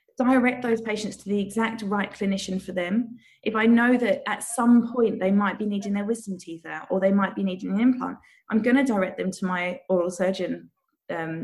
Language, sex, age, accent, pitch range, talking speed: English, female, 20-39, British, 185-230 Hz, 220 wpm